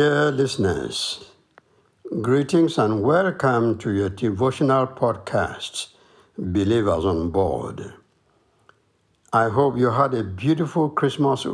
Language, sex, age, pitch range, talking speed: English, male, 60-79, 105-135 Hz, 100 wpm